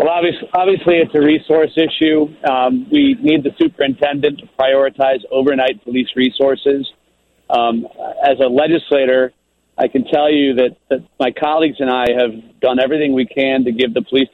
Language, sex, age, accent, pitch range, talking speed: English, male, 40-59, American, 120-140 Hz, 165 wpm